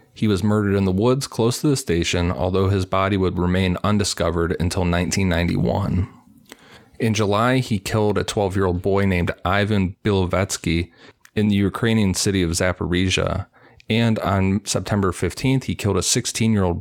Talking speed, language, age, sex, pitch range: 150 wpm, English, 30-49, male, 85-100 Hz